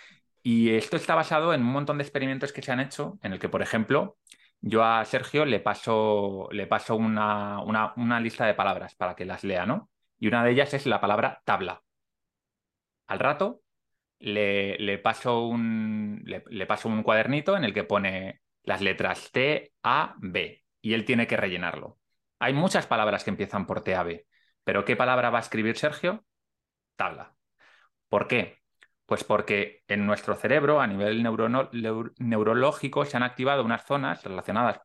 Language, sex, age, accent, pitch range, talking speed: Spanish, male, 30-49, Spanish, 105-140 Hz, 175 wpm